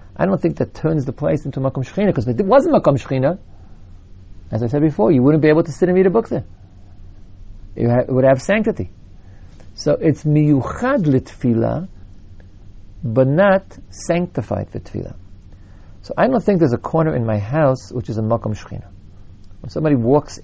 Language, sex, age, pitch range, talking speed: English, male, 50-69, 95-145 Hz, 180 wpm